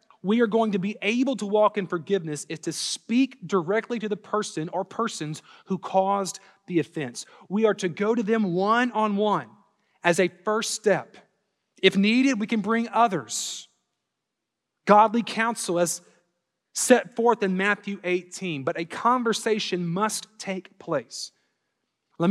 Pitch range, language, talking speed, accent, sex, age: 145-210 Hz, English, 150 wpm, American, male, 30-49